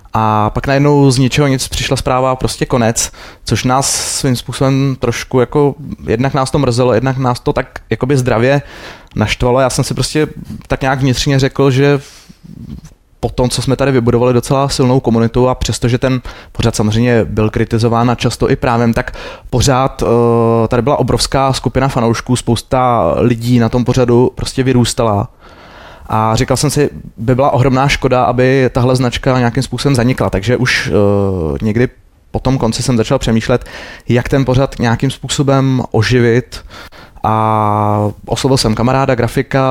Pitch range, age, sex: 115-130 Hz, 20-39, male